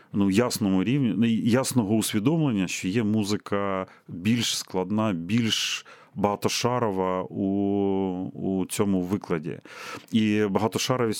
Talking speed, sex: 90 wpm, male